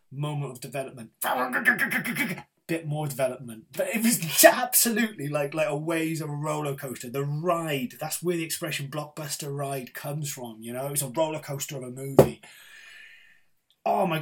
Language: English